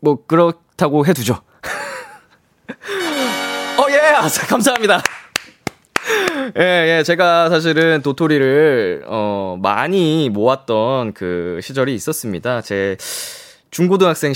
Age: 20-39